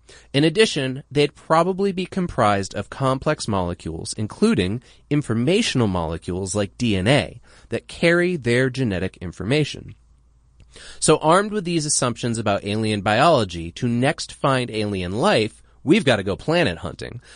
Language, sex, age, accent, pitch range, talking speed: English, male, 30-49, American, 95-145 Hz, 130 wpm